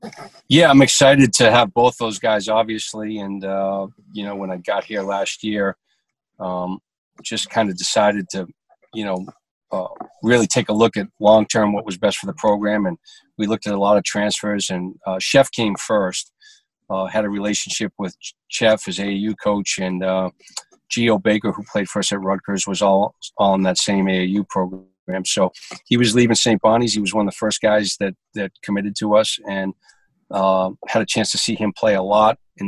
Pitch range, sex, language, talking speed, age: 95-110 Hz, male, English, 200 wpm, 40-59